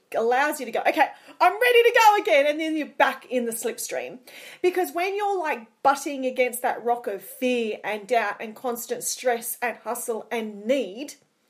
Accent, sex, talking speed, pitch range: Australian, female, 190 wpm, 245-340 Hz